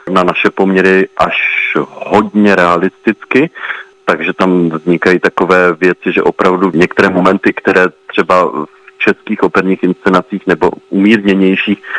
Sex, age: male, 40-59